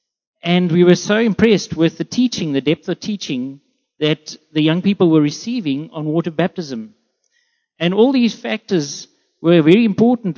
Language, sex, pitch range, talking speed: English, male, 155-195 Hz, 160 wpm